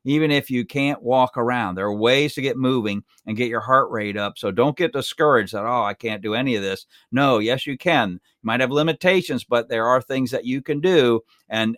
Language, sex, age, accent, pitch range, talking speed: English, male, 50-69, American, 120-155 Hz, 240 wpm